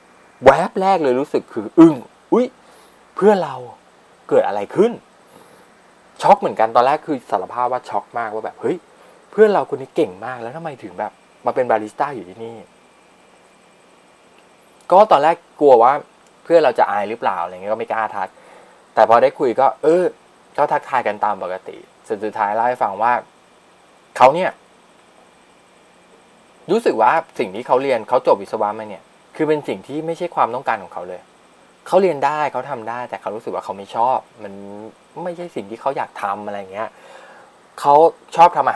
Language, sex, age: Thai, male, 20-39